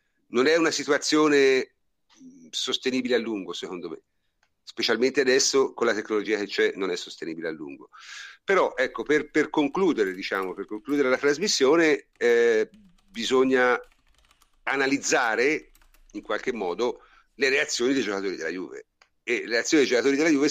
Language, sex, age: Italian, male, 50-69